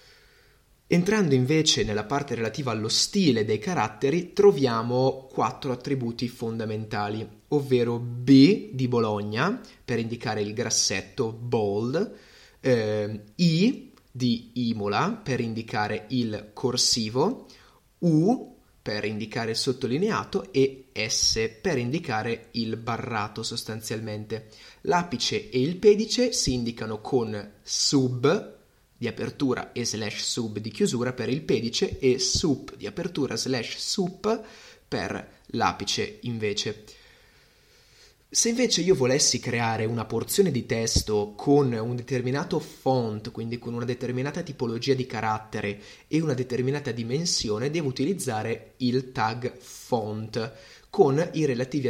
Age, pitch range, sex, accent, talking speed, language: 20-39, 110-140 Hz, male, native, 115 wpm, Italian